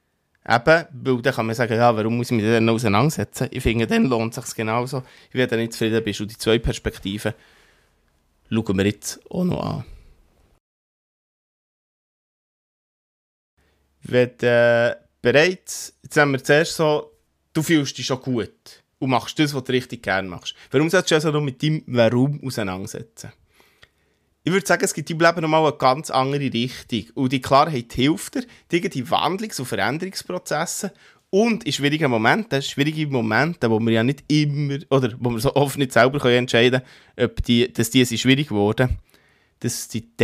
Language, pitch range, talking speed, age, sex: German, 110-145 Hz, 175 wpm, 20-39, male